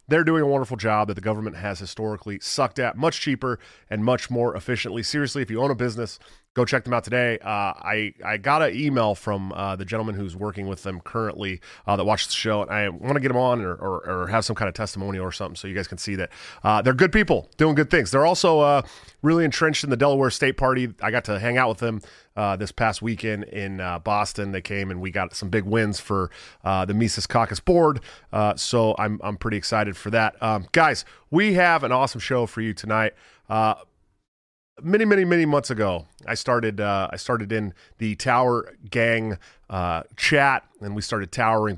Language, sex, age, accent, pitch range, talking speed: English, male, 30-49, American, 100-125 Hz, 225 wpm